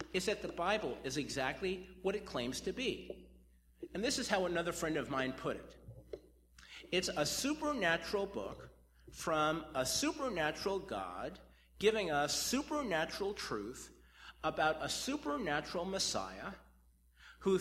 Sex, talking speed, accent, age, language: male, 130 wpm, American, 50-69, English